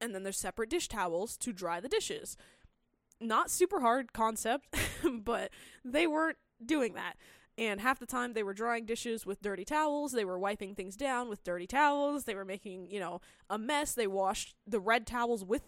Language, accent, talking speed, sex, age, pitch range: English, American, 195 wpm, female, 10-29, 195-240 Hz